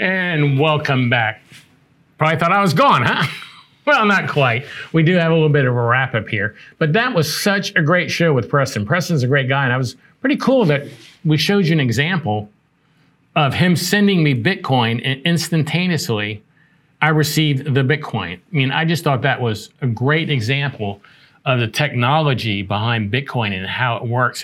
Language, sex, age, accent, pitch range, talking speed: English, male, 50-69, American, 125-160 Hz, 190 wpm